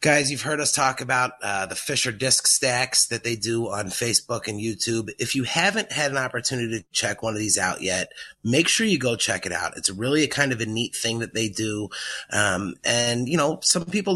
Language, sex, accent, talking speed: English, male, American, 235 wpm